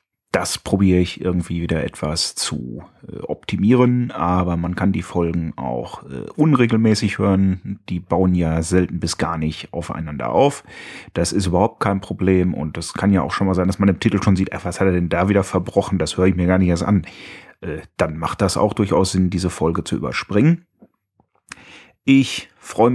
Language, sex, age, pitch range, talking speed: German, male, 30-49, 90-105 Hz, 185 wpm